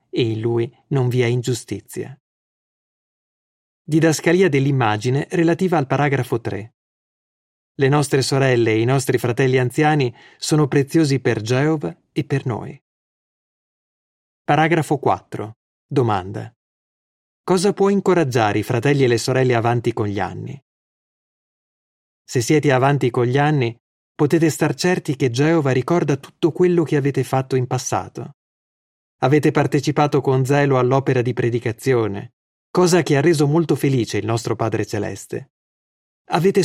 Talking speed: 130 wpm